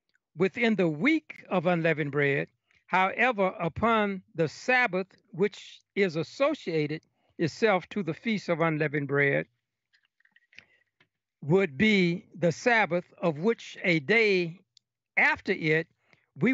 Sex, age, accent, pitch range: male, 60-79, American, 160-210 Hz